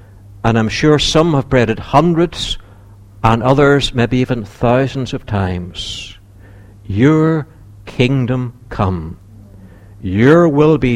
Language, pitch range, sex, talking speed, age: English, 100-120 Hz, male, 115 wpm, 60-79